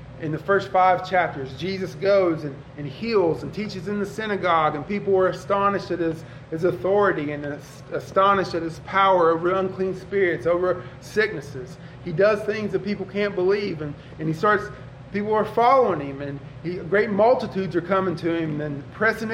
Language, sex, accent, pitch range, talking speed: English, male, American, 150-195 Hz, 185 wpm